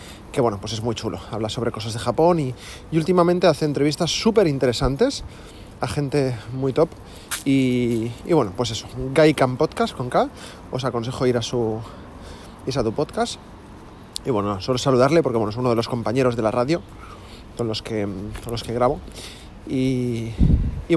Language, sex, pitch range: Spanish, male, 110-150 Hz